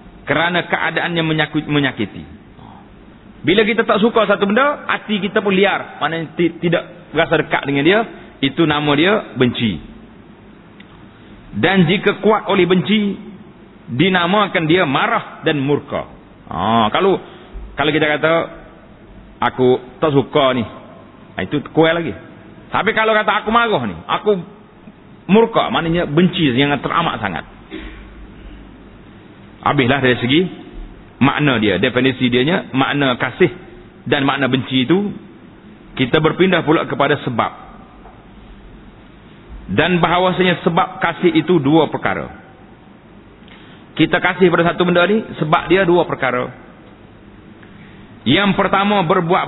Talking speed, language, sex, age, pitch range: 115 wpm, Malay, male, 40-59, 130-190 Hz